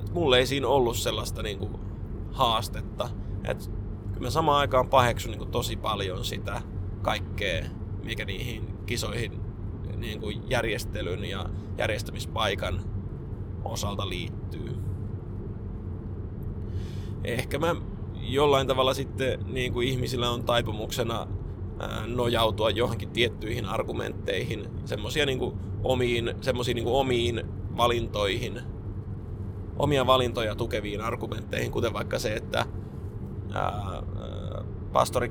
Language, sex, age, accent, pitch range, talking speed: Finnish, male, 20-39, native, 100-115 Hz, 90 wpm